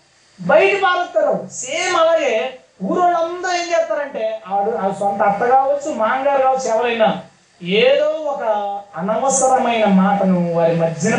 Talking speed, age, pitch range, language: 115 wpm, 30-49, 205-285 Hz, Telugu